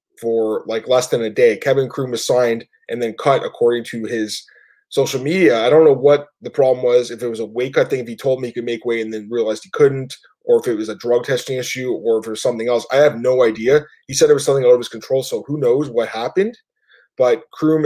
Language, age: English, 20-39